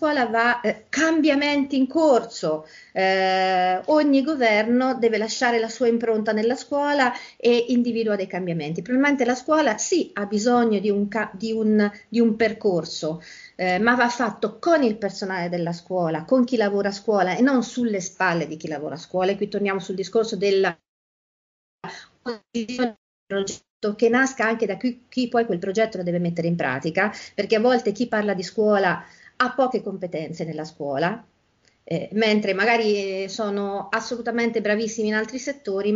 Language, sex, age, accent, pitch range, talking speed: Italian, female, 40-59, native, 190-240 Hz, 165 wpm